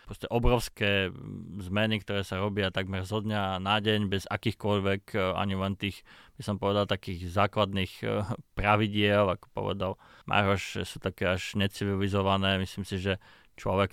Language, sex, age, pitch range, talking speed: Slovak, male, 20-39, 95-115 Hz, 140 wpm